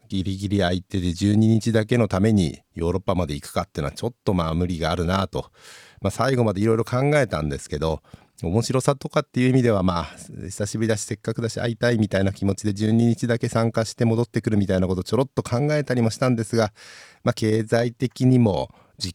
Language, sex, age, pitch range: Japanese, male, 50-69, 90-115 Hz